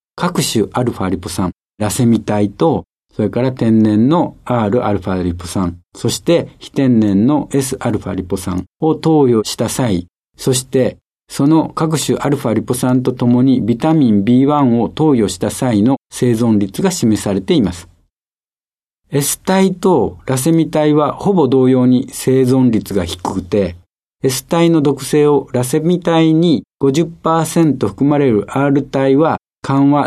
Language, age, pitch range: Japanese, 60-79, 105-150 Hz